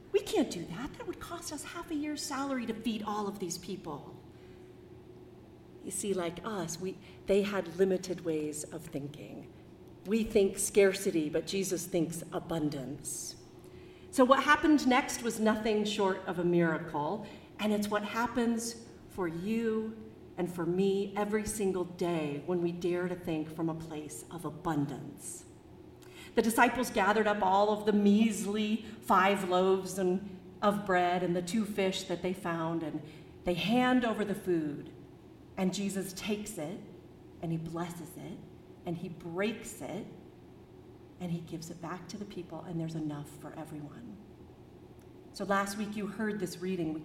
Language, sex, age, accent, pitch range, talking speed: English, female, 40-59, American, 170-215 Hz, 160 wpm